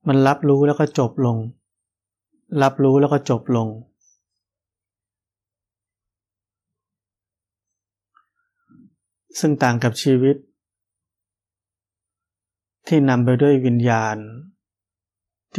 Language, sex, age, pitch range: Thai, male, 20-39, 100-135 Hz